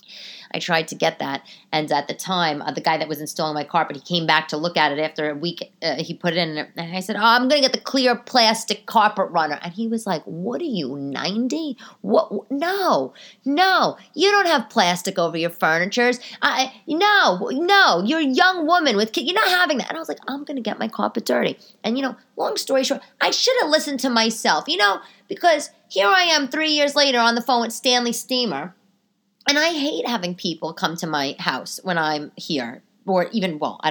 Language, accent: English, American